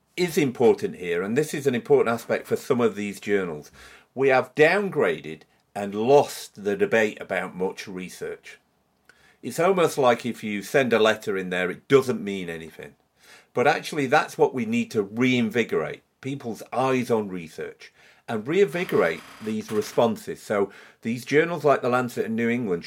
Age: 50-69